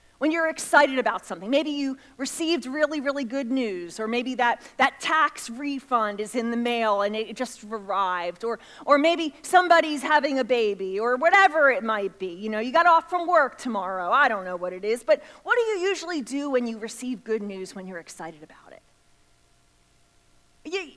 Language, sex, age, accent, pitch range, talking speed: English, female, 30-49, American, 225-310 Hz, 200 wpm